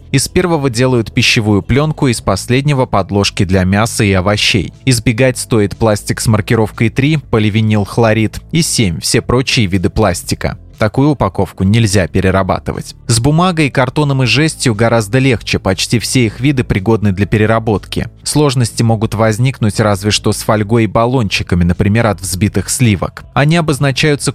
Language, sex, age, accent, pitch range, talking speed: Russian, male, 20-39, native, 105-130 Hz, 145 wpm